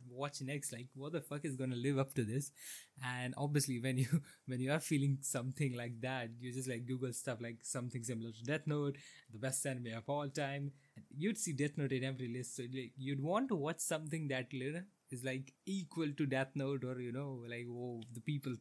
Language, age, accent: English, 20-39, Indian